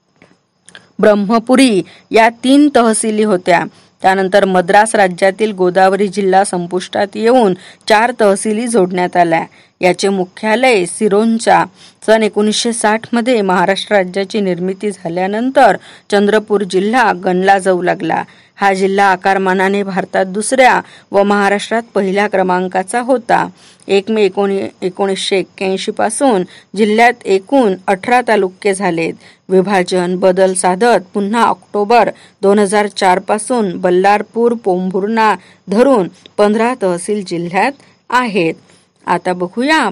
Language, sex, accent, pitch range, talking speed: Marathi, female, native, 190-225 Hz, 100 wpm